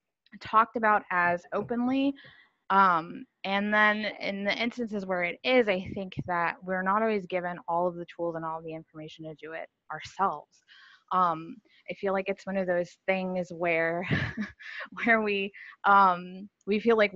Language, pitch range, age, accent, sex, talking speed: English, 165-200 Hz, 20-39, American, female, 170 wpm